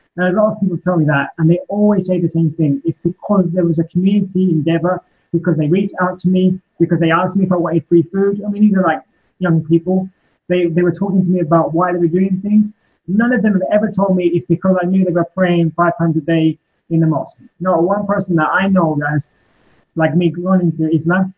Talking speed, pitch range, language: 255 wpm, 160-185 Hz, English